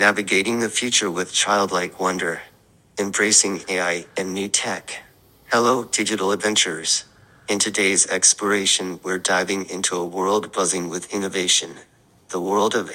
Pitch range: 95-105 Hz